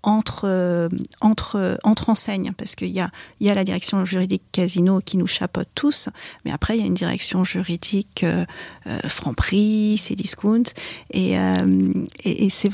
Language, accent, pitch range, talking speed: French, French, 185-210 Hz, 180 wpm